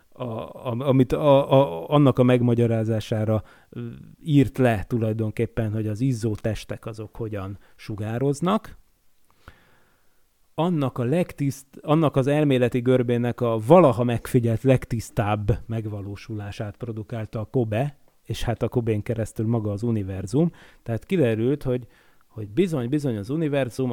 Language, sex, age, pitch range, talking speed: Hungarian, male, 30-49, 110-130 Hz, 120 wpm